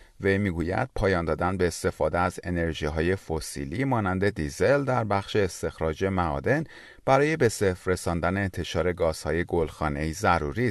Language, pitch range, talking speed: Persian, 80-120 Hz, 135 wpm